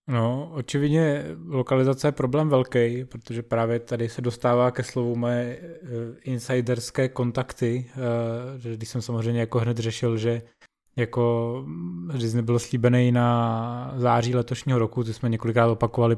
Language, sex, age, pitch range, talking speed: Czech, male, 20-39, 120-130 Hz, 130 wpm